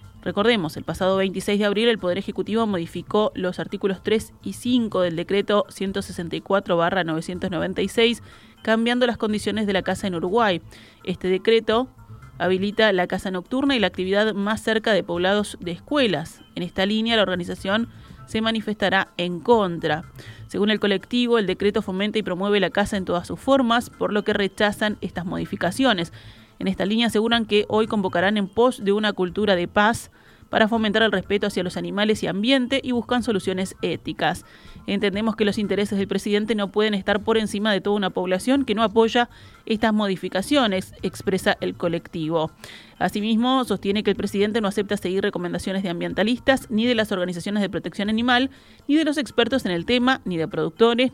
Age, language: 30-49, Spanish